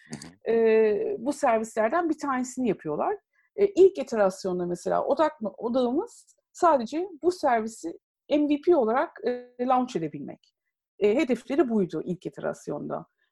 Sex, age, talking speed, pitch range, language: female, 50-69, 115 wpm, 195-295 Hz, Turkish